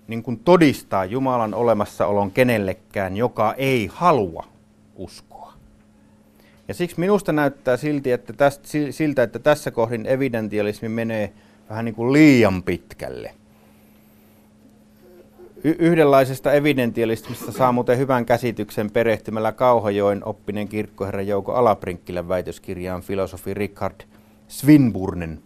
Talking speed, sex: 100 wpm, male